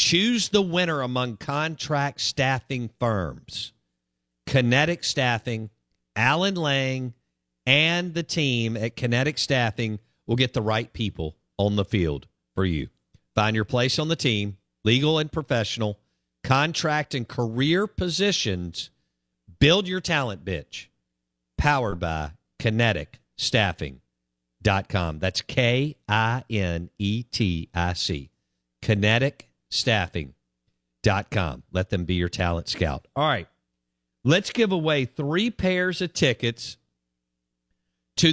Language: English